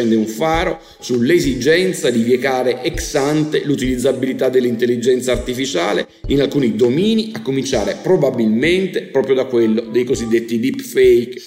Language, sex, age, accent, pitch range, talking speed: Italian, male, 50-69, native, 120-150 Hz, 115 wpm